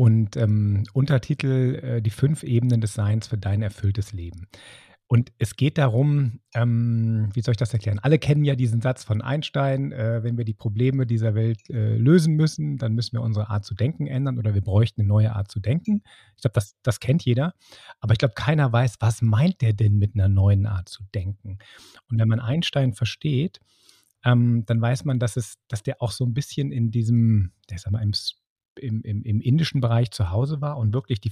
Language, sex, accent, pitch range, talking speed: German, male, German, 110-130 Hz, 215 wpm